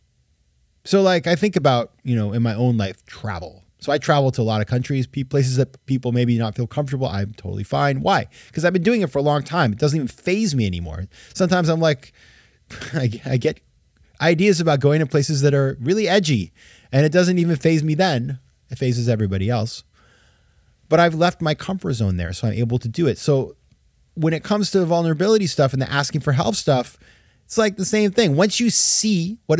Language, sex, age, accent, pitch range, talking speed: English, male, 20-39, American, 105-160 Hz, 215 wpm